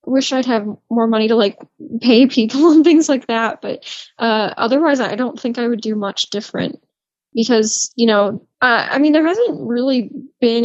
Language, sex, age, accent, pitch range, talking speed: English, female, 10-29, American, 205-245 Hz, 190 wpm